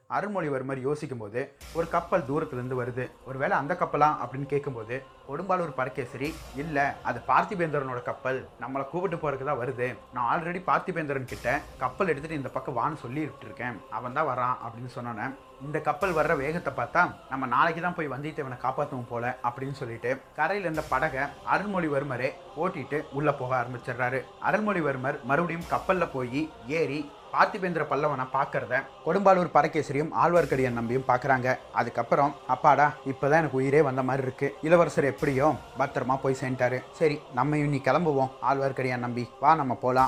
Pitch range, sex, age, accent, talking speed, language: 125-150 Hz, male, 30-49, native, 140 wpm, Tamil